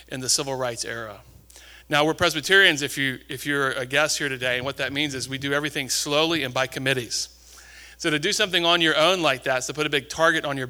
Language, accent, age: English, American, 40-59